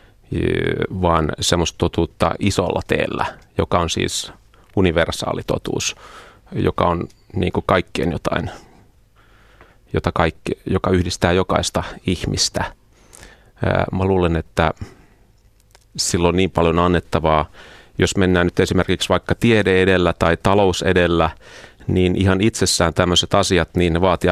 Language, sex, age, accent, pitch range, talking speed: Finnish, male, 30-49, native, 85-100 Hz, 110 wpm